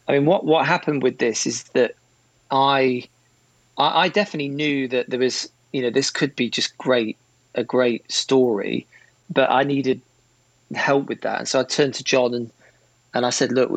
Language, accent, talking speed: English, British, 190 wpm